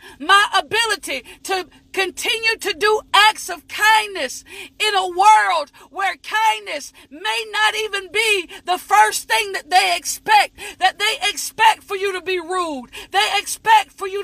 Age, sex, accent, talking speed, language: 40-59, female, American, 150 wpm, English